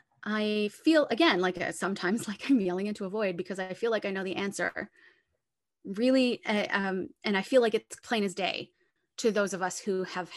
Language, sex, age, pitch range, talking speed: English, female, 20-39, 190-240 Hz, 205 wpm